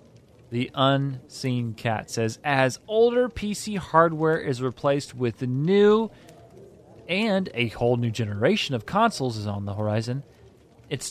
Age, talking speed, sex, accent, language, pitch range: 30-49, 135 wpm, male, American, English, 115-150 Hz